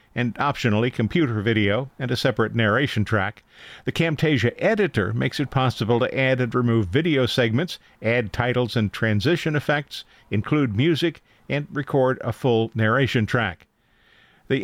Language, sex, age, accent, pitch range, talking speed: English, male, 50-69, American, 115-145 Hz, 145 wpm